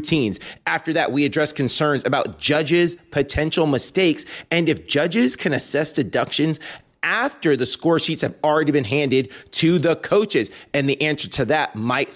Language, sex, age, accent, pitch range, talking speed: English, male, 30-49, American, 140-180 Hz, 160 wpm